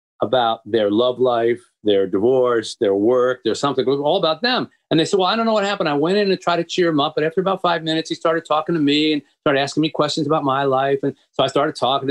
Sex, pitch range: male, 115-155 Hz